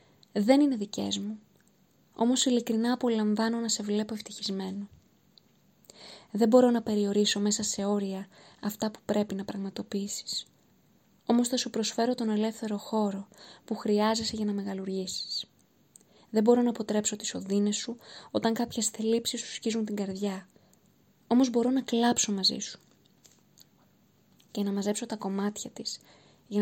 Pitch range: 205-235 Hz